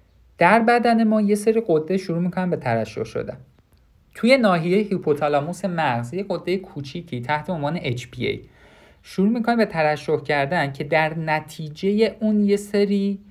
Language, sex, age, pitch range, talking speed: Persian, male, 50-69, 130-195 Hz, 140 wpm